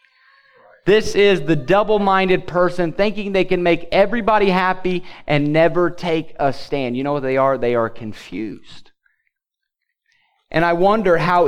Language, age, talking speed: English, 30-49, 145 wpm